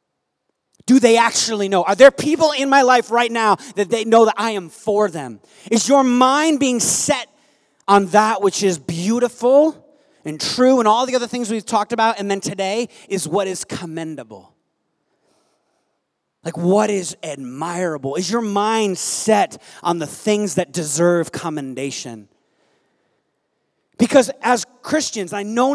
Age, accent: 30-49, American